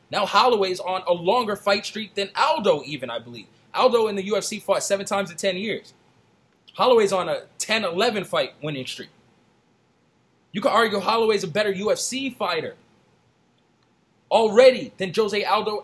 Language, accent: English, American